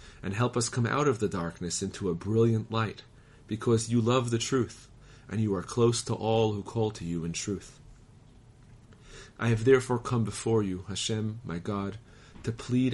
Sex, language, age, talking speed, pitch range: male, English, 40-59, 185 wpm, 100-120 Hz